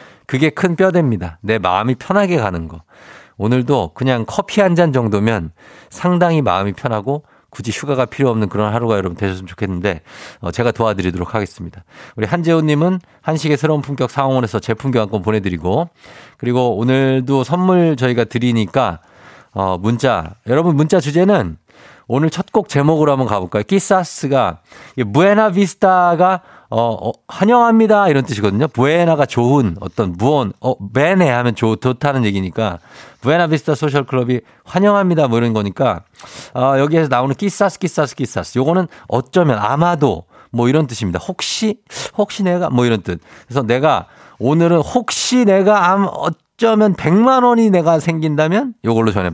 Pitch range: 110-170 Hz